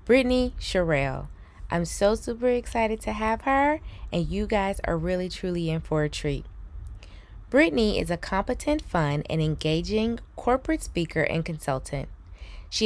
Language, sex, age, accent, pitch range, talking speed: English, female, 20-39, American, 155-225 Hz, 145 wpm